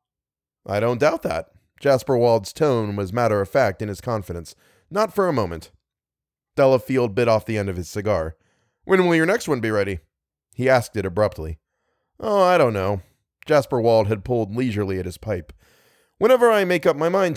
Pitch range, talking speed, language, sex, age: 100-140 Hz, 190 wpm, English, male, 30-49